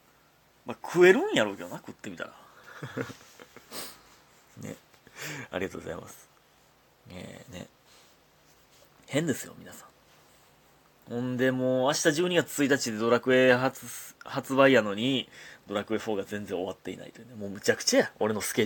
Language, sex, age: Japanese, male, 30-49